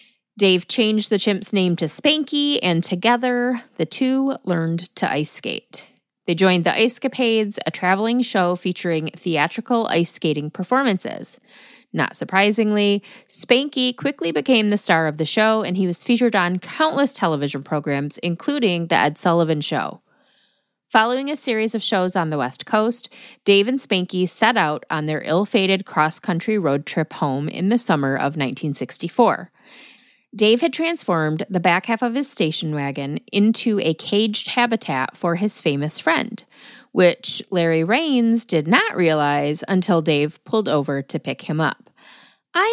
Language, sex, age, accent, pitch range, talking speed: English, female, 30-49, American, 165-245 Hz, 155 wpm